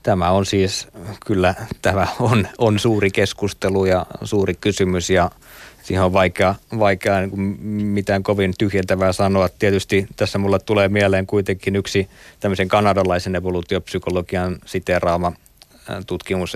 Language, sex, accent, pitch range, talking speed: Finnish, male, native, 90-100 Hz, 115 wpm